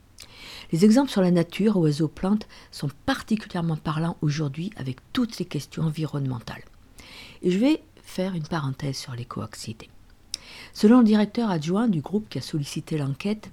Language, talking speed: French, 150 wpm